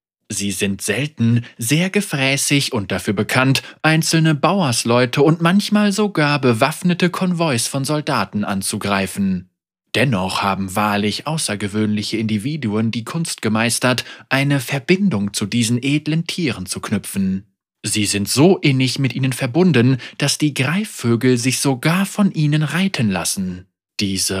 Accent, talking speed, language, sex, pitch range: German, 125 wpm, German, male, 105-165 Hz